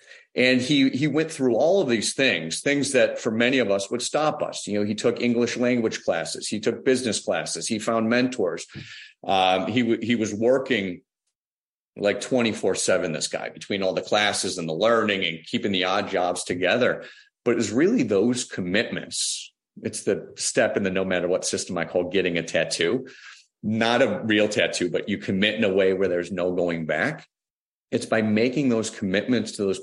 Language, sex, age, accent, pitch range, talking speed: English, male, 40-59, American, 95-130 Hz, 195 wpm